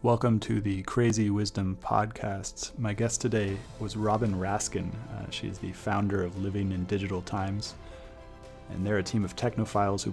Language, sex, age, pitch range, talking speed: English, male, 30-49, 95-105 Hz, 165 wpm